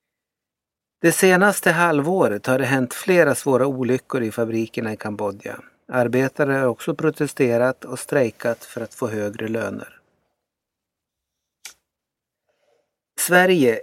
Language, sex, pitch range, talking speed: Swedish, male, 125-155 Hz, 110 wpm